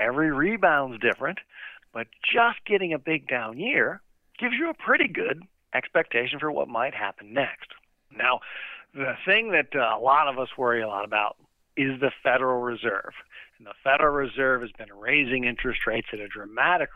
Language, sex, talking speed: English, male, 175 wpm